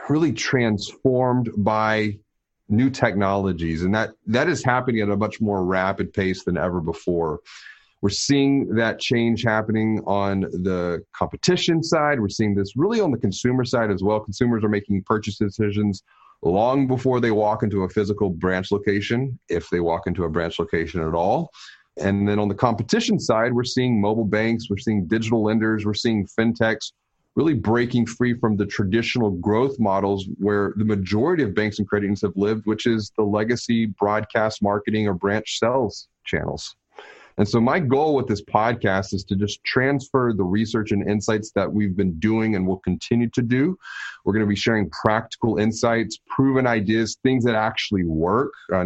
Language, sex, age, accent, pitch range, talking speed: English, male, 30-49, American, 100-120 Hz, 175 wpm